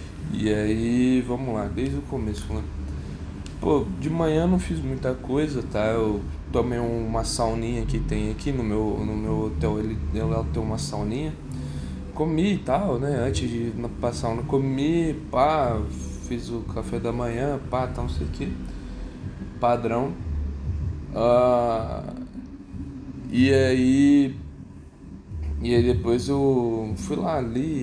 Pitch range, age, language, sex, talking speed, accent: 95-135 Hz, 10-29, Portuguese, male, 140 wpm, Brazilian